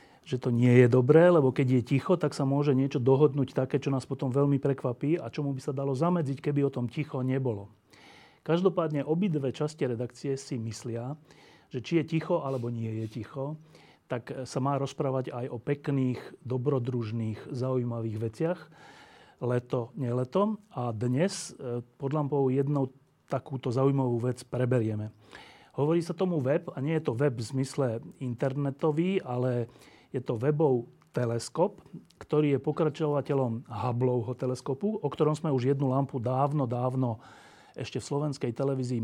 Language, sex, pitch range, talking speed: Slovak, male, 125-145 Hz, 155 wpm